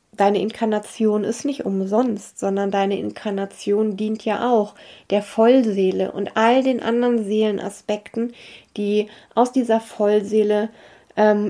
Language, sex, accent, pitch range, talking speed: German, female, German, 195-225 Hz, 120 wpm